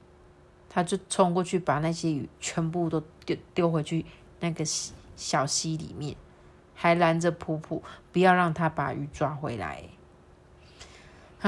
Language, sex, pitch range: Chinese, female, 165-225 Hz